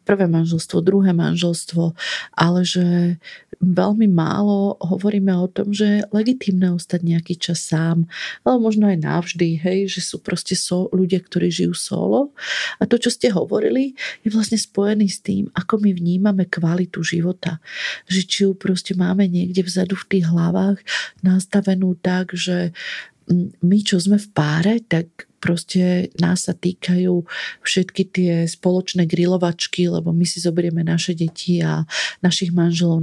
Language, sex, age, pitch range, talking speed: Slovak, female, 40-59, 170-190 Hz, 145 wpm